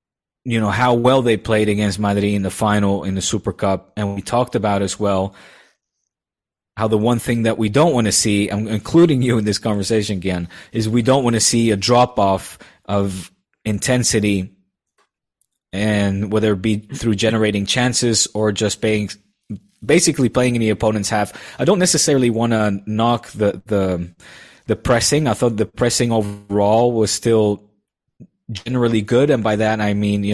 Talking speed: 175 wpm